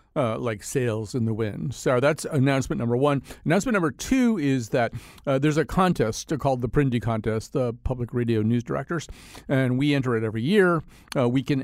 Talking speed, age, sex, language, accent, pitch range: 195 wpm, 50-69, male, English, American, 115-145 Hz